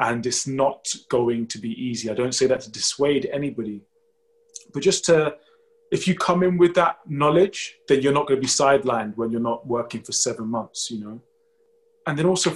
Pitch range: 130-195 Hz